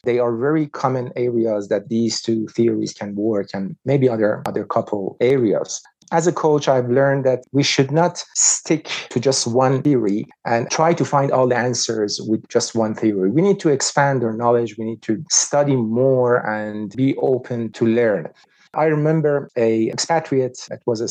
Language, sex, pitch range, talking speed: English, male, 115-140 Hz, 185 wpm